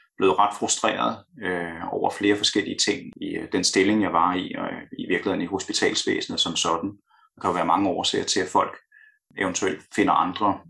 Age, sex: 30-49, male